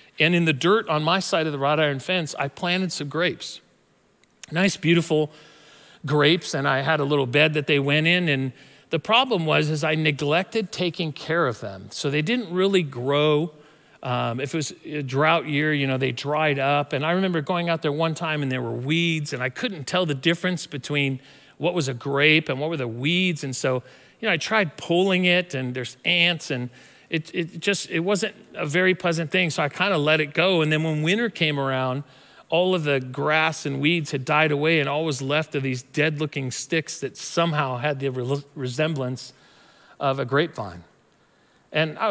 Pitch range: 140-170 Hz